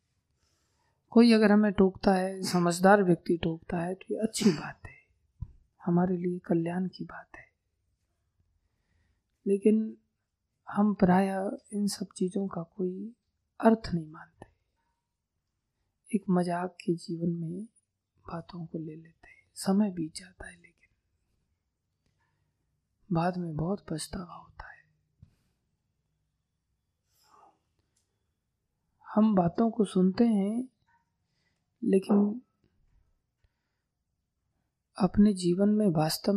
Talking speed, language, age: 100 wpm, Hindi, 20-39